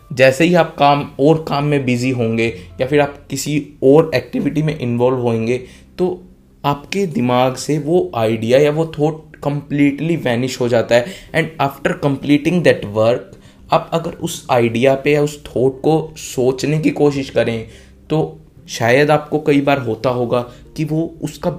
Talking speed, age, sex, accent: 165 wpm, 20-39, male, native